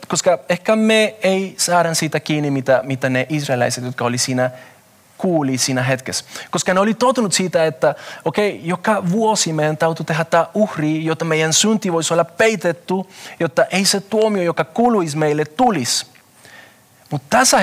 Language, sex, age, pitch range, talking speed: Finnish, male, 30-49, 130-185 Hz, 160 wpm